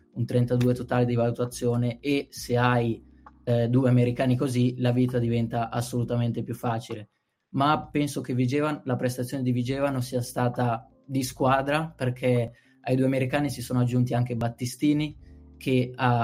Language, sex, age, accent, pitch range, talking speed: Italian, male, 20-39, native, 120-140 Hz, 150 wpm